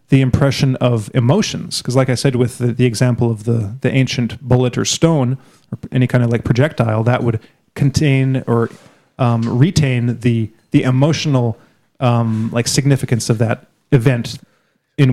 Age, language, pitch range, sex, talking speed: 30-49, English, 120-140 Hz, male, 165 wpm